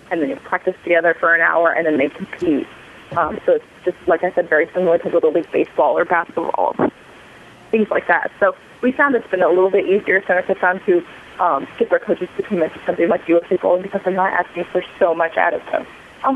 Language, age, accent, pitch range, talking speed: English, 20-39, American, 175-230 Hz, 240 wpm